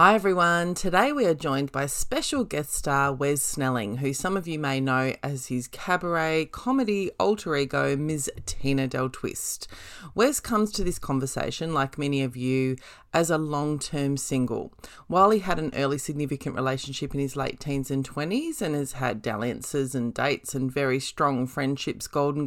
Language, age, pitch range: English, 30-49, 135-175 Hz